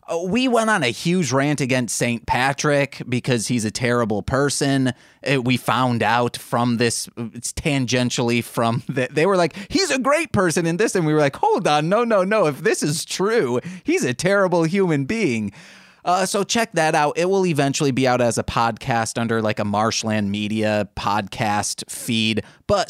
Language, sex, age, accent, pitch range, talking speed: English, male, 30-49, American, 115-180 Hz, 185 wpm